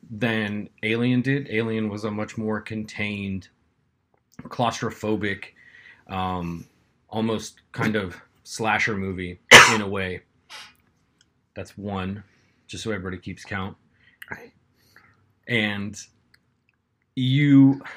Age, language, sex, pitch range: 30-49, English, male, 95-115 Hz